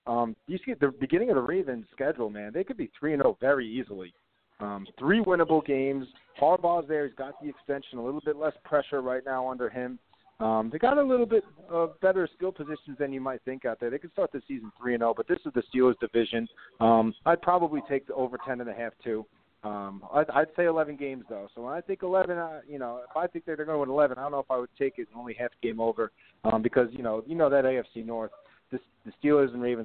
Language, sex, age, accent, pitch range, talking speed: English, male, 40-59, American, 115-155 Hz, 250 wpm